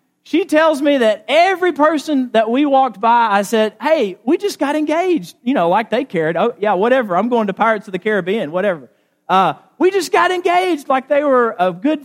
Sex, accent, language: male, American, English